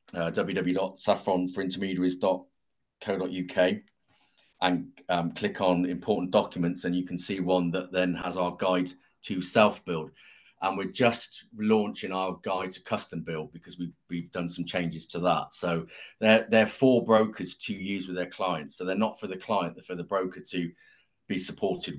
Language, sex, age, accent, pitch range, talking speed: English, male, 40-59, British, 90-110 Hz, 165 wpm